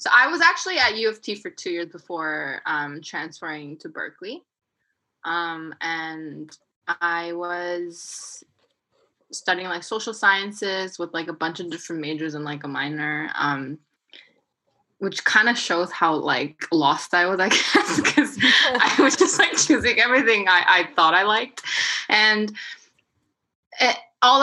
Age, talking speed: 20-39, 150 wpm